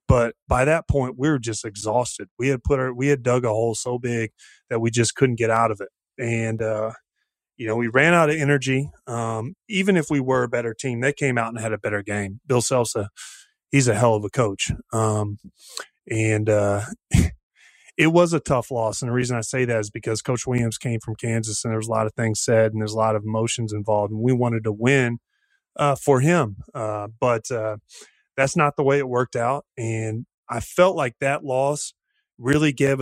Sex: male